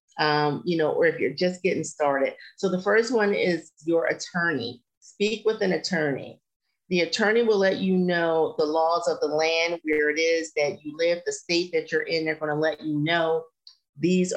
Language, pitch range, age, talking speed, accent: English, 155-190 Hz, 40-59, 205 wpm, American